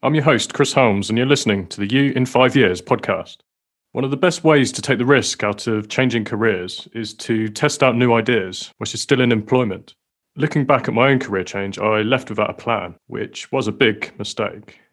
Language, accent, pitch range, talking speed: English, British, 105-130 Hz, 220 wpm